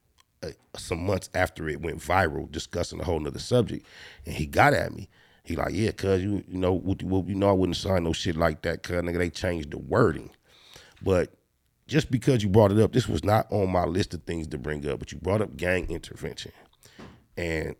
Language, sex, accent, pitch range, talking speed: English, male, American, 85-105 Hz, 215 wpm